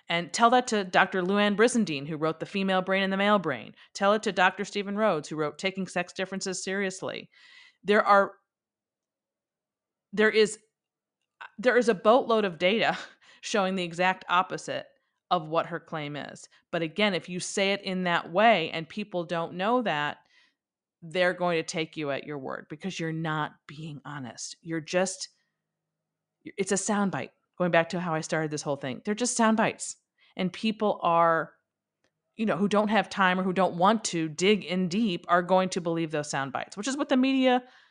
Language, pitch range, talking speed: English, 165-205 Hz, 190 wpm